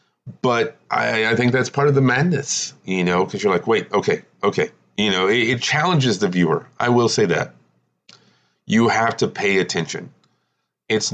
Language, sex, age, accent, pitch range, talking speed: English, male, 30-49, American, 85-125 Hz, 185 wpm